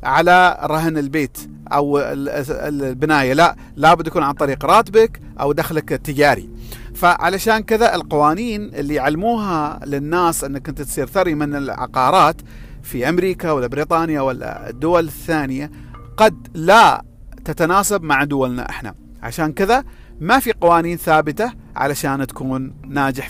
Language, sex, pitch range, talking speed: Arabic, male, 135-175 Hz, 125 wpm